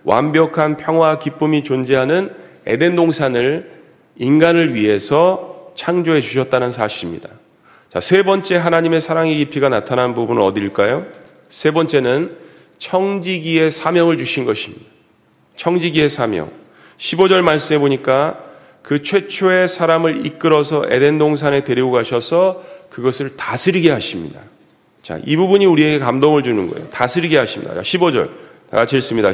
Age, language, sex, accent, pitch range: 40-59, Korean, male, native, 135-170 Hz